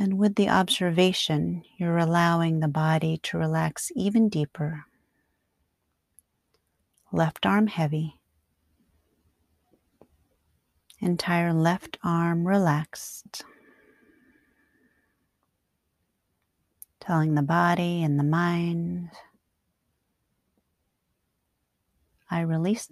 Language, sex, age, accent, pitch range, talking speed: English, female, 40-59, American, 145-185 Hz, 70 wpm